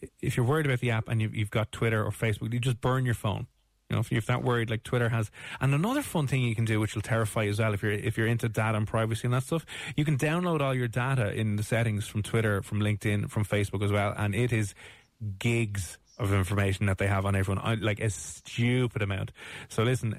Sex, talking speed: male, 255 wpm